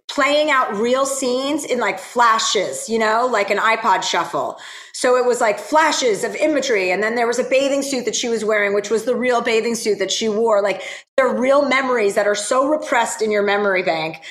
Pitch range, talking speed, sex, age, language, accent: 205-275 Hz, 220 wpm, female, 30-49, English, American